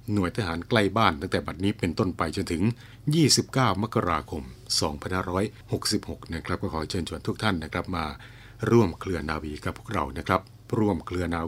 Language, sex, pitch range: Thai, male, 90-115 Hz